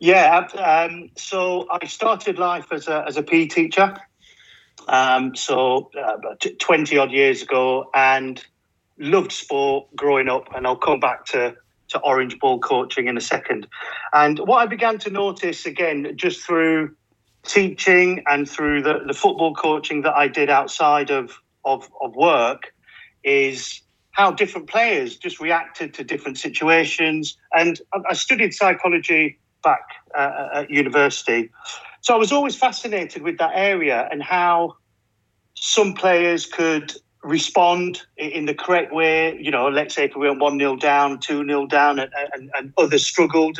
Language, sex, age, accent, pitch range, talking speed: English, male, 40-59, British, 145-190 Hz, 155 wpm